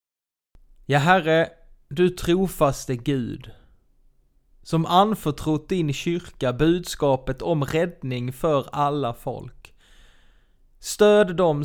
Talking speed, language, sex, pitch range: 90 wpm, Swedish, male, 130-165 Hz